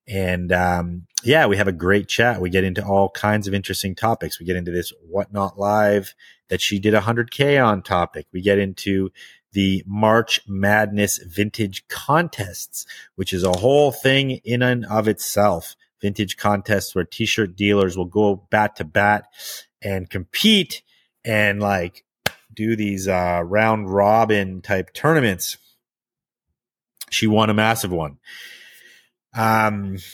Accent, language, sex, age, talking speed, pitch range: American, English, male, 30-49, 145 wpm, 95-110 Hz